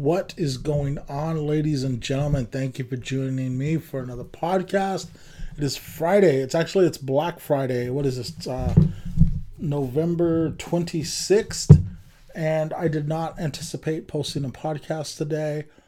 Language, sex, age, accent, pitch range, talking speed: English, male, 30-49, American, 140-165 Hz, 145 wpm